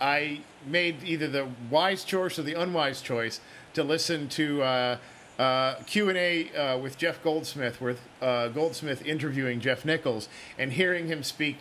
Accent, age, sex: American, 50-69, male